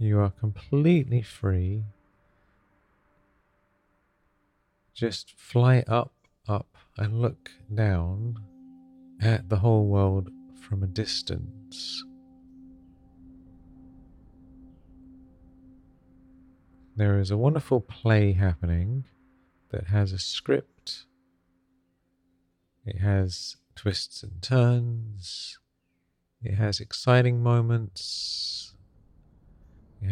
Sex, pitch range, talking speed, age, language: male, 90-115 Hz, 75 wpm, 40-59, English